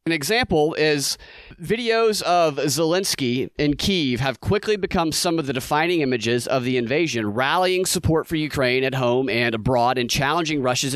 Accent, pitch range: American, 135-180 Hz